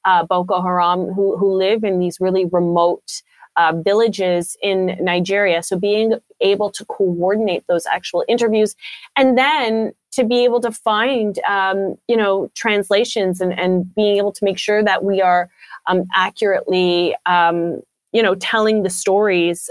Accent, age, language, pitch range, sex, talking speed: American, 30-49, English, 185-220 Hz, female, 155 wpm